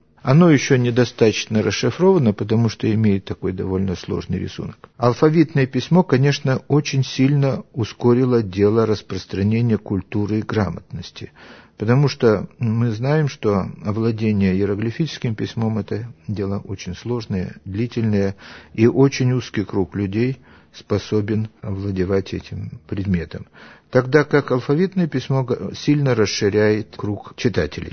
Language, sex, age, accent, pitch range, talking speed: Russian, male, 50-69, native, 100-135 Hz, 110 wpm